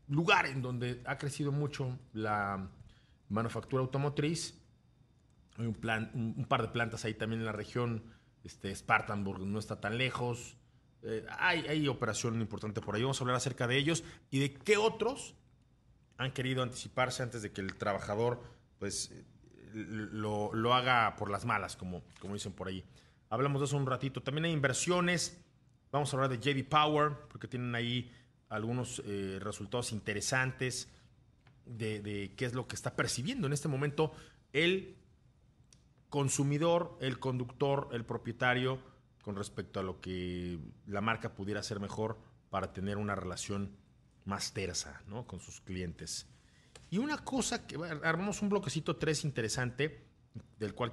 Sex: male